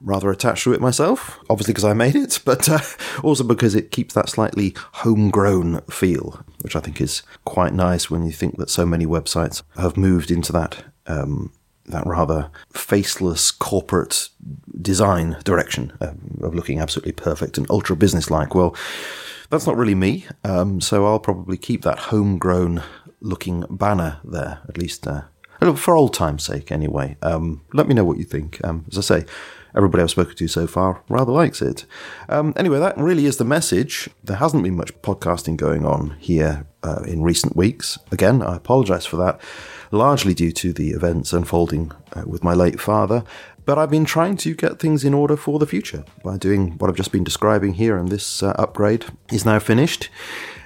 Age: 30-49